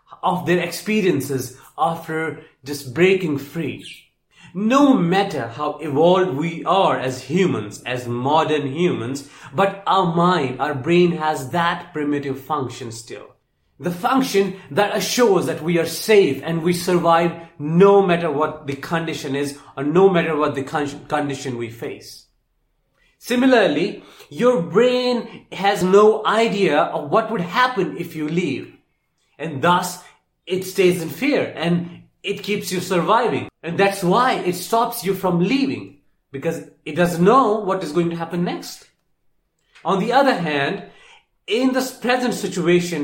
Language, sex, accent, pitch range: English, male, Indian, 150-200 Hz